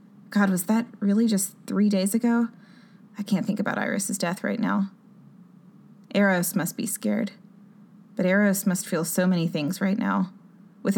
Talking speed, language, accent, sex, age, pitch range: 165 wpm, English, American, female, 20-39, 185-210 Hz